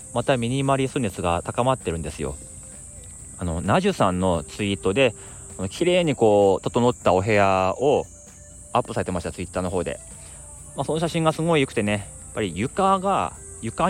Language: Japanese